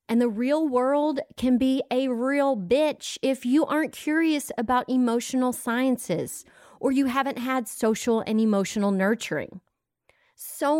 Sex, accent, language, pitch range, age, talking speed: female, American, English, 200-275 Hz, 30-49, 140 wpm